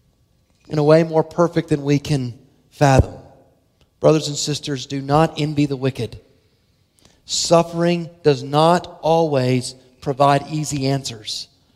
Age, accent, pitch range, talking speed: 40-59, American, 155-215 Hz, 125 wpm